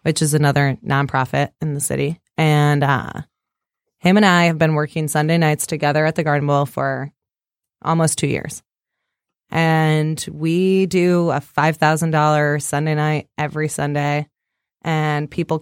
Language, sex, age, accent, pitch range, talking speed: English, female, 20-39, American, 150-190 Hz, 140 wpm